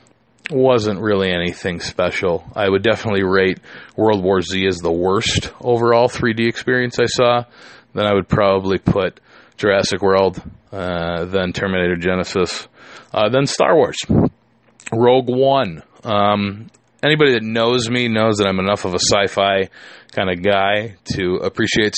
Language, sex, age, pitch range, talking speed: English, male, 20-39, 95-115 Hz, 145 wpm